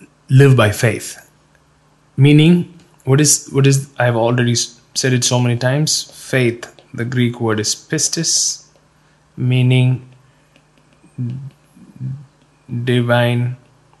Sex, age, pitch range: male, 20-39, 120-155 Hz